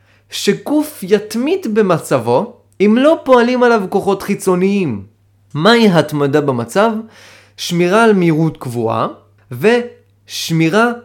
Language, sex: Hebrew, male